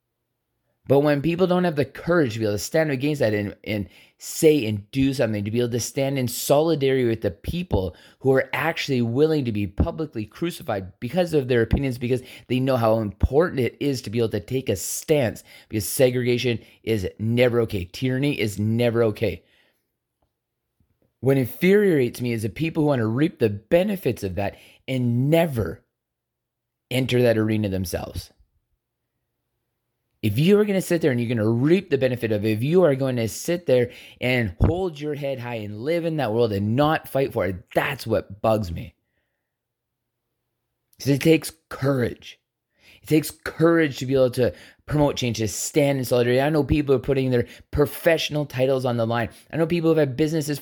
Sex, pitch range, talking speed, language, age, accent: male, 110-145 Hz, 190 wpm, English, 30-49, American